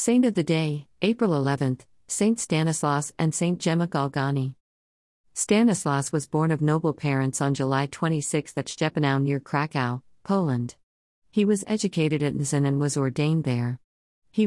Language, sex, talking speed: Malayalam, female, 145 wpm